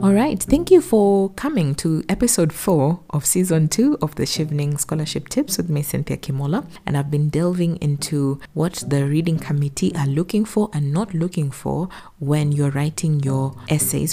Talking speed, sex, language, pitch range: 180 wpm, female, English, 135-175 Hz